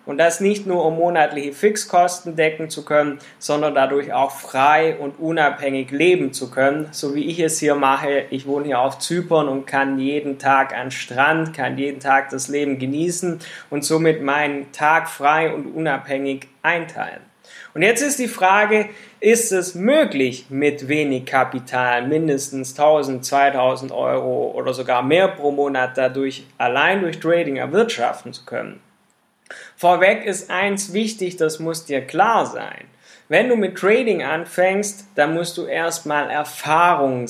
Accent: German